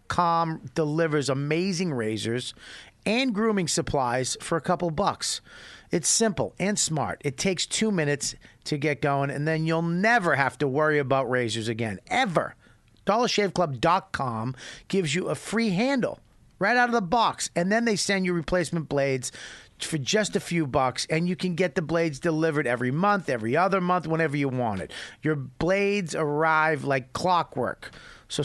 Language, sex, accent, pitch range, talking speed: English, male, American, 145-190 Hz, 165 wpm